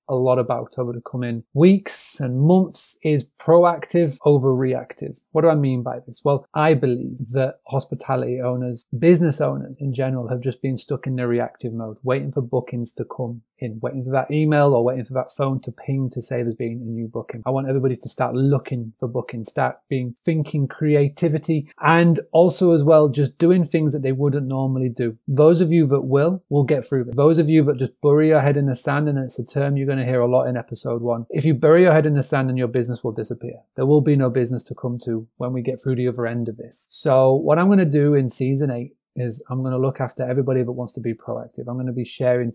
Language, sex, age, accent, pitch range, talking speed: English, male, 30-49, British, 125-150 Hz, 245 wpm